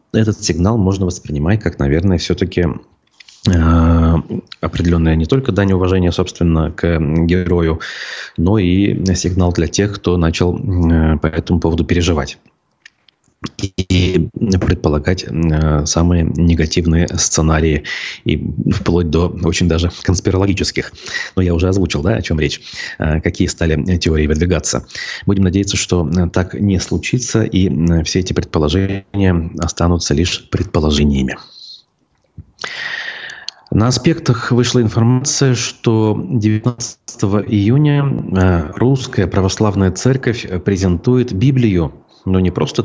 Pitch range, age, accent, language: 80-100 Hz, 30-49, native, Russian